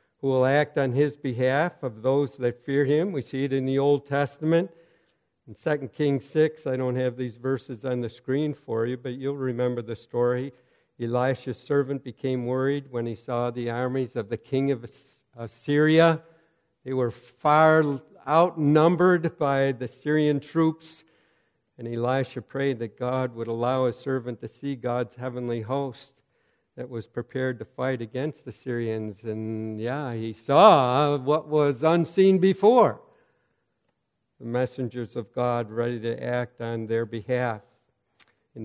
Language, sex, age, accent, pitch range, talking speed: English, male, 60-79, American, 120-145 Hz, 155 wpm